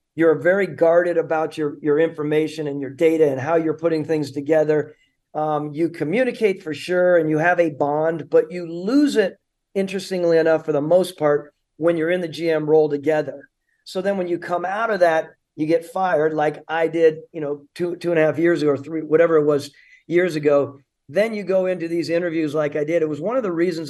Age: 50-69